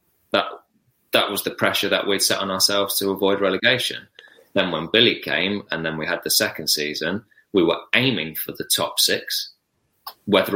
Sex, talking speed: male, 180 wpm